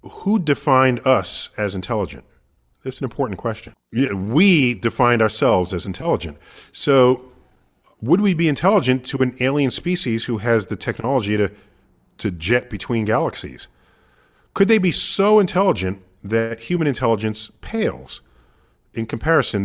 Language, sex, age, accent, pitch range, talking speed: English, male, 40-59, American, 100-140 Hz, 130 wpm